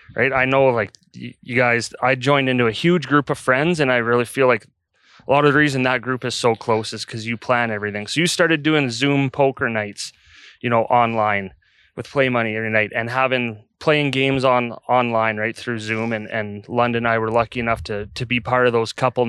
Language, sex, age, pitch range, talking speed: English, male, 20-39, 115-140 Hz, 225 wpm